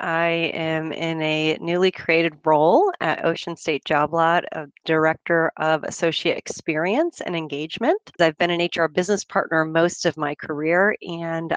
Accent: American